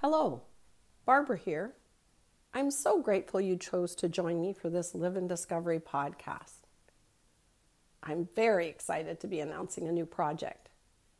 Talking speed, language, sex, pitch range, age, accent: 140 wpm, English, female, 170-225 Hz, 50-69, American